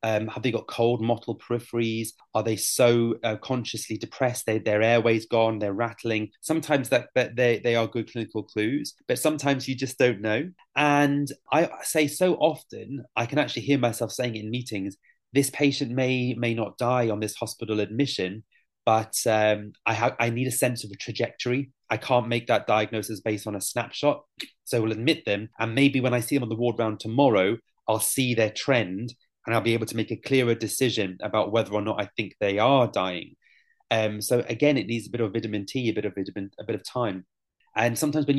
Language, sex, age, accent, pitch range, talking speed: English, male, 30-49, British, 110-125 Hz, 210 wpm